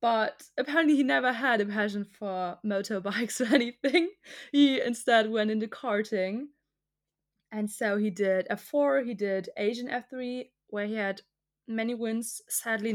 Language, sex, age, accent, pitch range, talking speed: English, female, 20-39, German, 200-240 Hz, 145 wpm